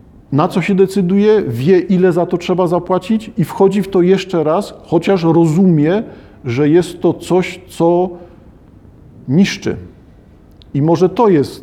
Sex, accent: male, native